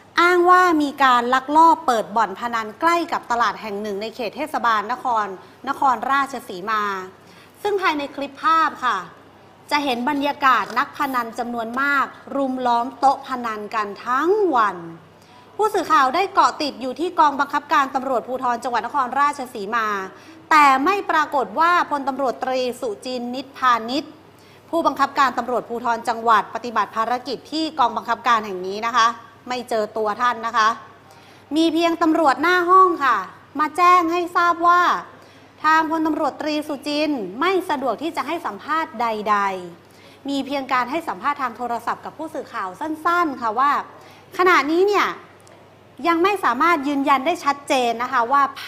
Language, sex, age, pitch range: Thai, female, 30-49, 235-315 Hz